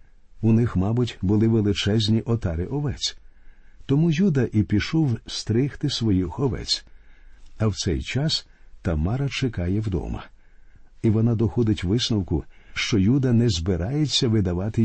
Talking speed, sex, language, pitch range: 120 wpm, male, Ukrainian, 95-125 Hz